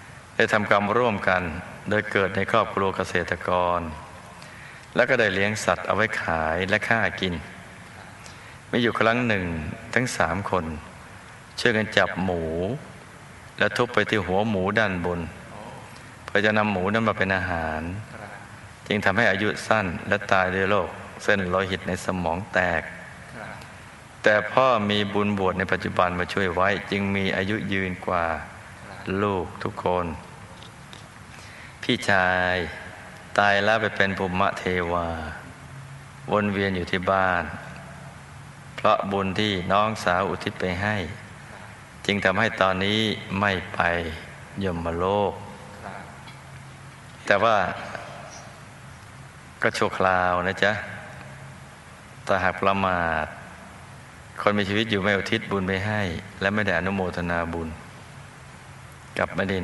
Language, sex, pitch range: Thai, male, 90-105 Hz